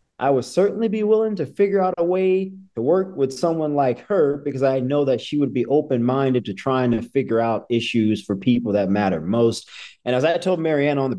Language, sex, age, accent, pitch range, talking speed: English, male, 40-59, American, 115-150 Hz, 230 wpm